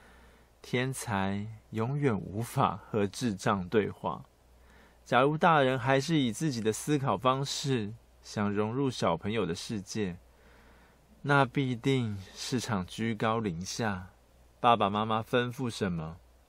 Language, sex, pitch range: Chinese, male, 95-135 Hz